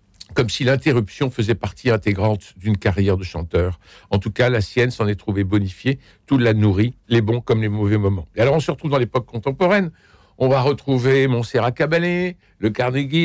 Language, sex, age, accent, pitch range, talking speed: French, male, 60-79, French, 105-135 Hz, 195 wpm